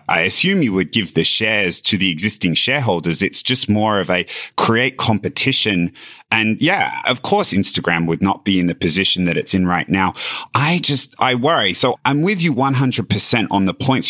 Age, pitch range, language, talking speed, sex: 30-49, 100-135 Hz, English, 195 wpm, male